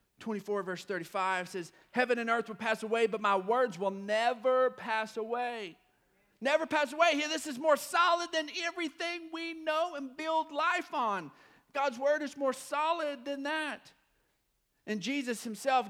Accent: American